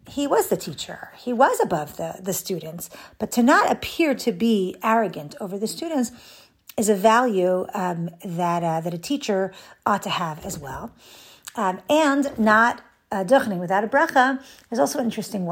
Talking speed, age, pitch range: 180 wpm, 50-69, 190-255 Hz